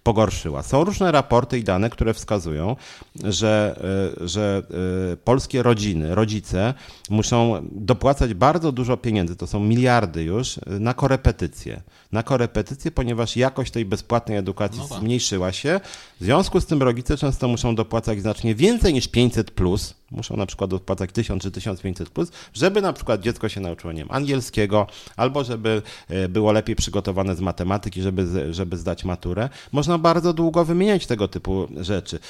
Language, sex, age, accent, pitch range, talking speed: English, male, 40-59, Polish, 100-135 Hz, 150 wpm